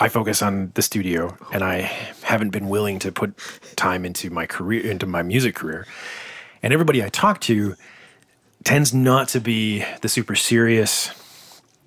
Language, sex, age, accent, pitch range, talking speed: English, male, 30-49, American, 100-125 Hz, 160 wpm